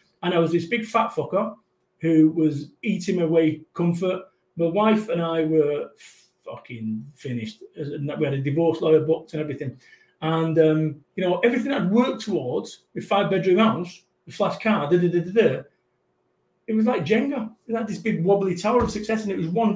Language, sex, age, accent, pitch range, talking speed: English, male, 40-59, British, 150-215 Hz, 175 wpm